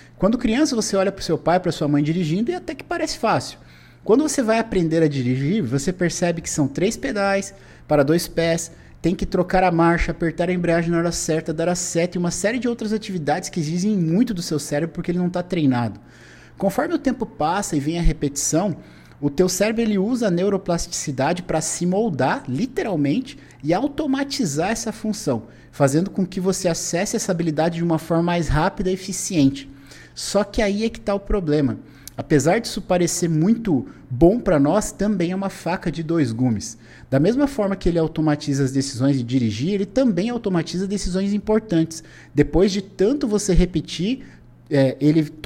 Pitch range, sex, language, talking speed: 155-200 Hz, male, Portuguese, 190 wpm